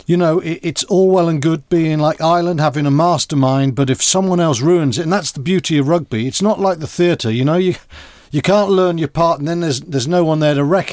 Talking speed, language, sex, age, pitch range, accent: 260 wpm, English, male, 50-69, 135-175 Hz, British